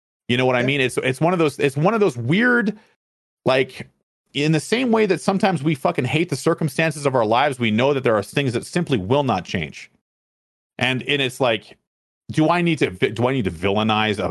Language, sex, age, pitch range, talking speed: English, male, 40-59, 110-155 Hz, 225 wpm